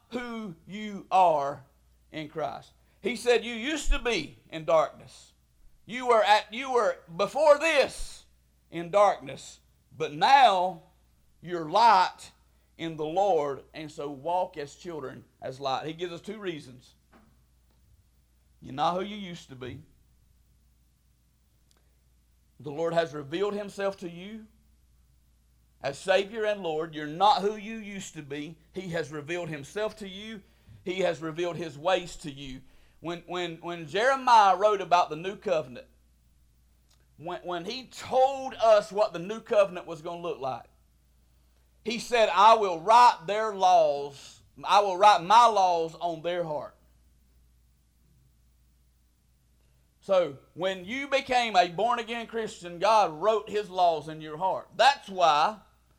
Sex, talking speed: male, 140 wpm